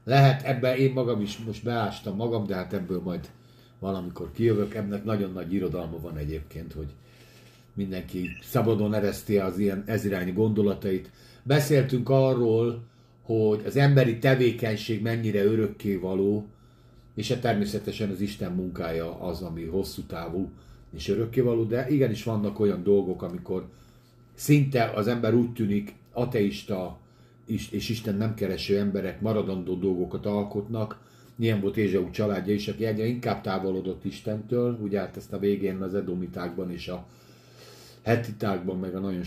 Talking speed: 140 wpm